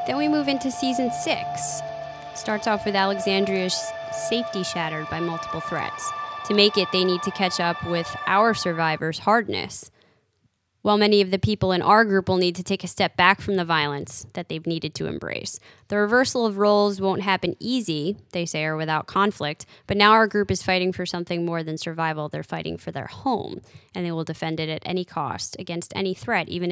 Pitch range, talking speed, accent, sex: 160-210 Hz, 200 wpm, American, female